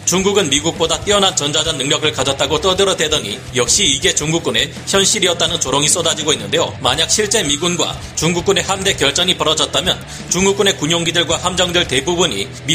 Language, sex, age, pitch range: Korean, male, 40-59, 150-180 Hz